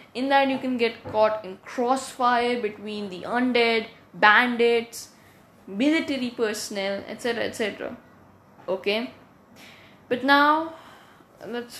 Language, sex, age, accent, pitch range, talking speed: English, female, 10-29, Indian, 200-255 Hz, 100 wpm